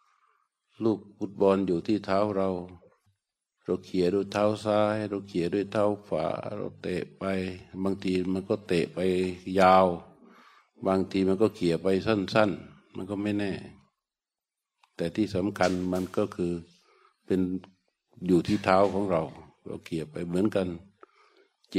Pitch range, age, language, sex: 90-105 Hz, 60-79, Thai, male